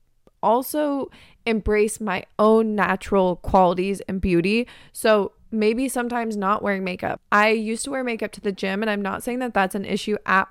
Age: 20-39